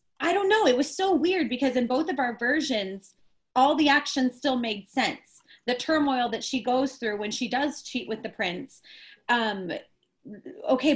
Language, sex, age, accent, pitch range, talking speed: English, female, 20-39, American, 220-275 Hz, 185 wpm